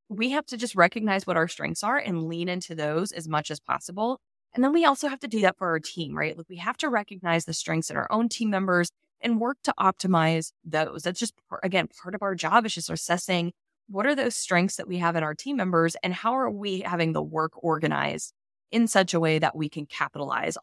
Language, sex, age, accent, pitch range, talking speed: English, female, 20-39, American, 160-210 Hz, 240 wpm